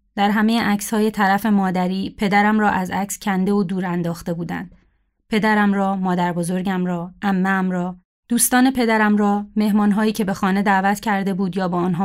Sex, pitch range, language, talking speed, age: female, 190-225 Hz, Persian, 170 wpm, 30-49